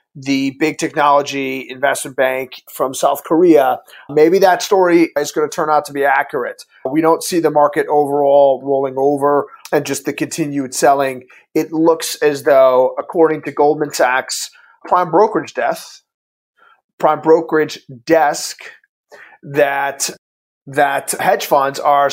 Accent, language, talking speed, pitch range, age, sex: American, English, 140 wpm, 140-160 Hz, 30-49, male